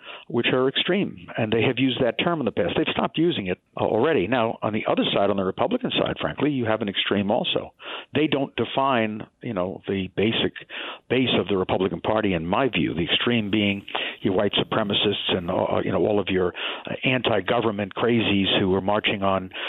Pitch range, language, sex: 100-135 Hz, English, male